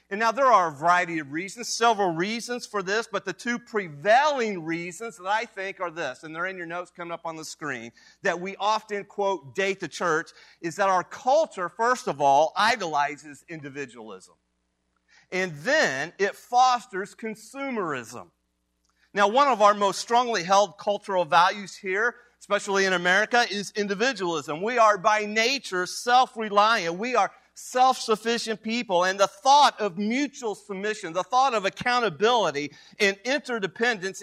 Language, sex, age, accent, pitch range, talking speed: English, male, 40-59, American, 175-230 Hz, 155 wpm